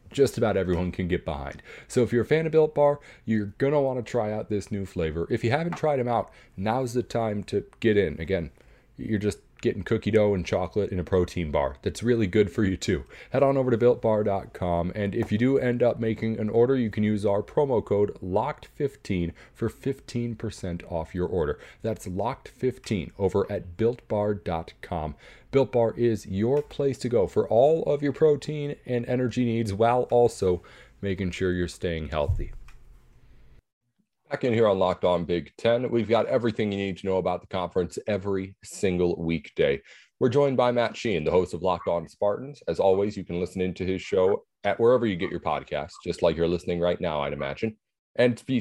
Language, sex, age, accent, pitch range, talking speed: English, male, 40-59, American, 90-120 Hz, 200 wpm